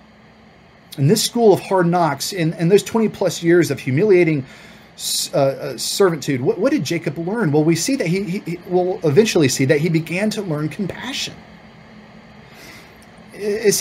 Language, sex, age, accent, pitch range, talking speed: English, male, 30-49, American, 150-205 Hz, 165 wpm